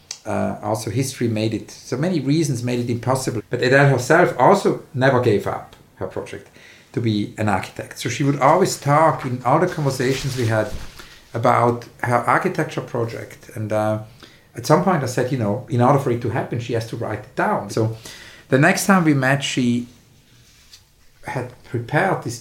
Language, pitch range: English, 115-145 Hz